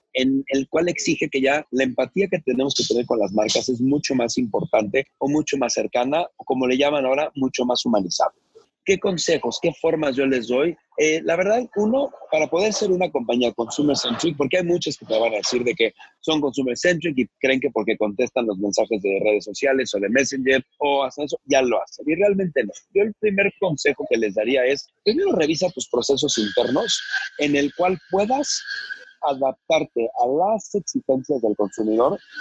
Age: 40-59